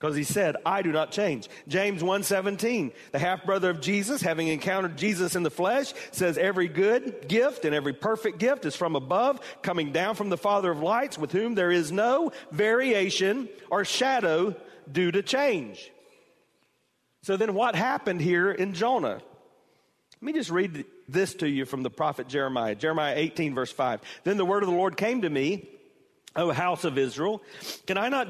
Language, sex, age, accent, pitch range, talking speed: English, male, 40-59, American, 170-235 Hz, 190 wpm